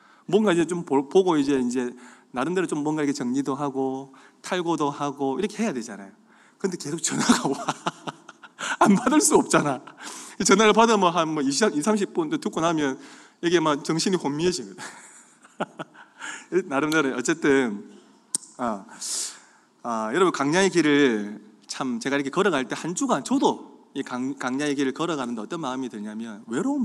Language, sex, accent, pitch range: Korean, male, native, 135-225 Hz